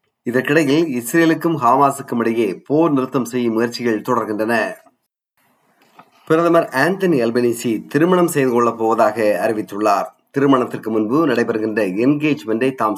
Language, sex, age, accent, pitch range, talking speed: Tamil, male, 30-49, native, 110-145 Hz, 90 wpm